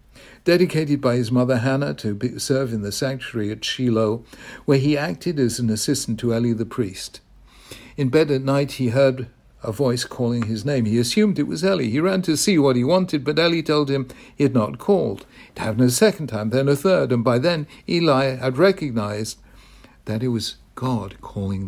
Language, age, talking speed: English, 60-79, 200 wpm